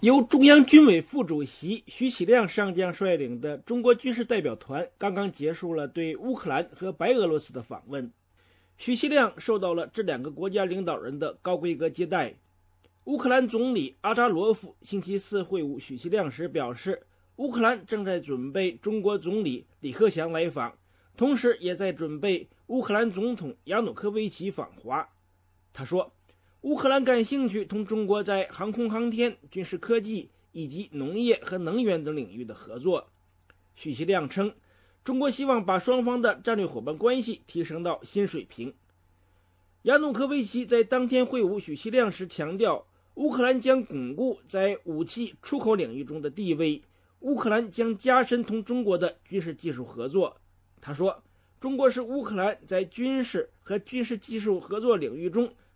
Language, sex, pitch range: English, male, 160-240 Hz